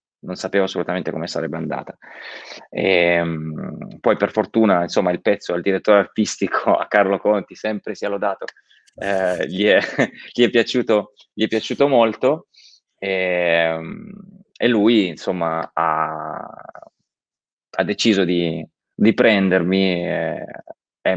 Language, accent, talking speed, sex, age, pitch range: Italian, native, 130 wpm, male, 20-39, 85-100 Hz